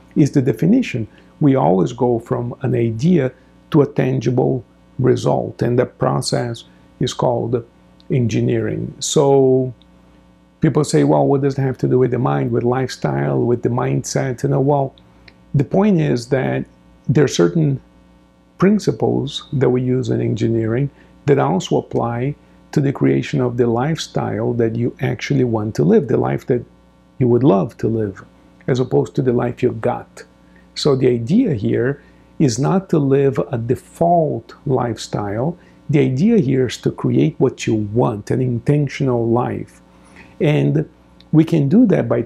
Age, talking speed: 50-69, 160 wpm